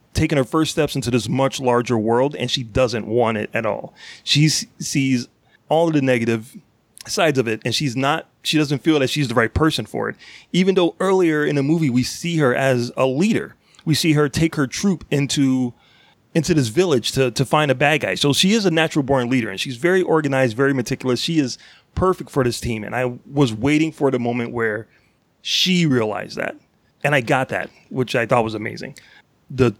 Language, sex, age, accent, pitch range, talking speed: English, male, 30-49, American, 125-155 Hz, 215 wpm